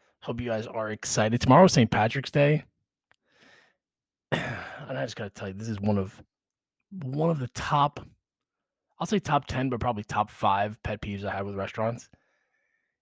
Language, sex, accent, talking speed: English, male, American, 175 wpm